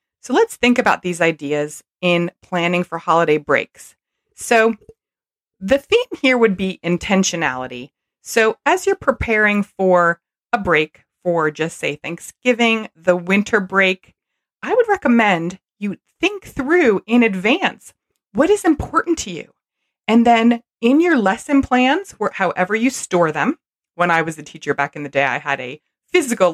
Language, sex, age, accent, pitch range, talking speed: English, female, 30-49, American, 175-255 Hz, 155 wpm